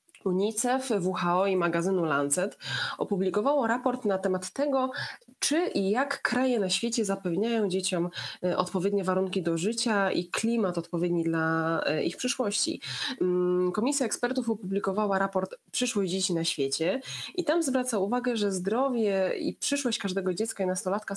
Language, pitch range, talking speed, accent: Polish, 175-210 Hz, 135 wpm, native